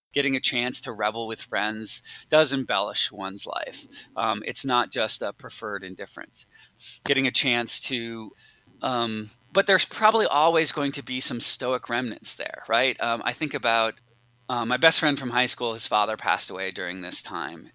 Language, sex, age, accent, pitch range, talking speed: English, male, 20-39, American, 110-140 Hz, 180 wpm